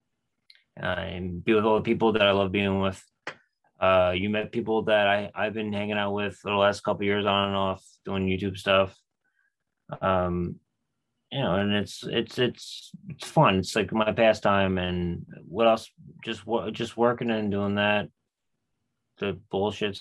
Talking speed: 175 wpm